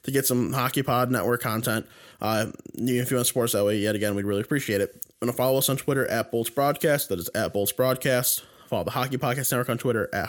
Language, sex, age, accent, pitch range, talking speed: English, male, 20-39, American, 110-130 Hz, 245 wpm